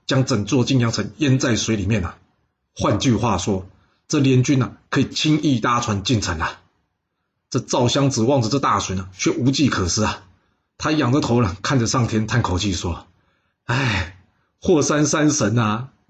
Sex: male